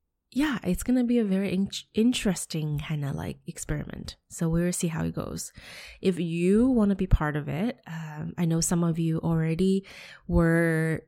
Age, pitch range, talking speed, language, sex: 20-39, 155-175 Hz, 185 wpm, English, female